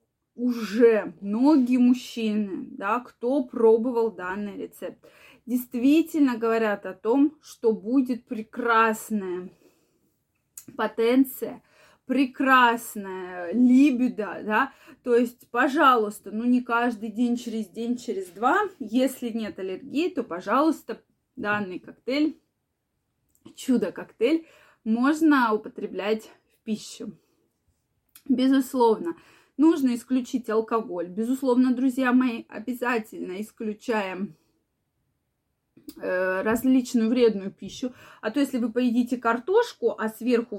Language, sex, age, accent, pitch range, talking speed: Russian, female, 20-39, native, 215-260 Hz, 90 wpm